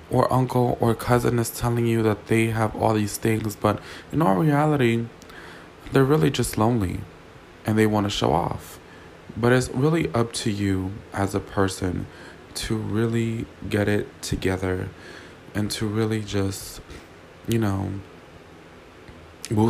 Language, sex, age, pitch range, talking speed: English, male, 20-39, 90-115 Hz, 145 wpm